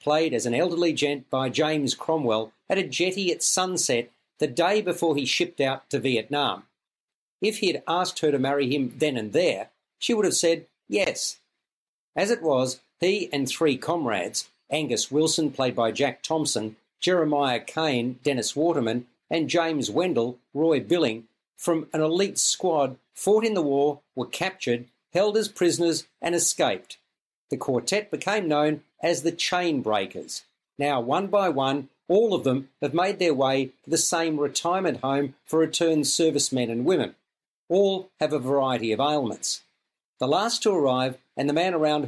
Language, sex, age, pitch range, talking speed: English, male, 50-69, 135-170 Hz, 165 wpm